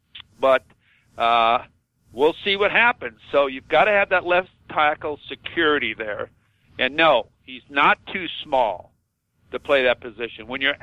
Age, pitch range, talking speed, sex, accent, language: 50-69, 125-155 Hz, 155 wpm, male, American, English